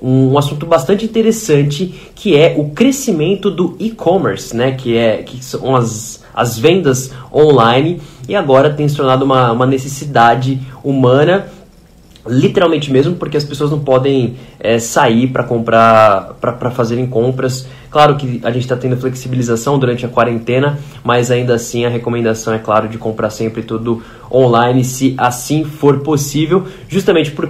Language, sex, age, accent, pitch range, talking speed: Portuguese, male, 20-39, Brazilian, 120-150 Hz, 140 wpm